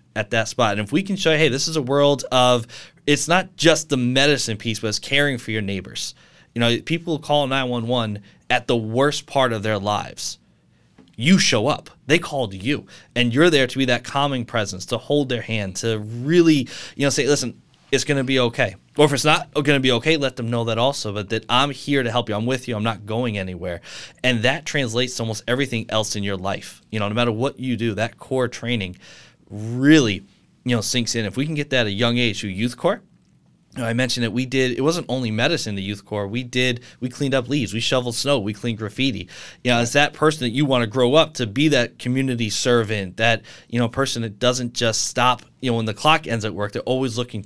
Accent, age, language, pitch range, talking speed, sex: American, 20-39, English, 110-135 Hz, 245 wpm, male